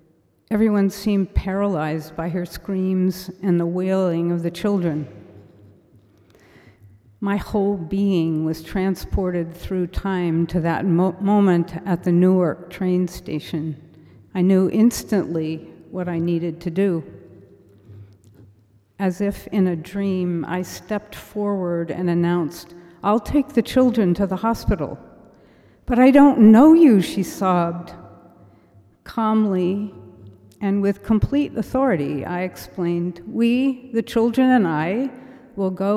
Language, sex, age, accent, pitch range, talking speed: English, female, 50-69, American, 160-200 Hz, 120 wpm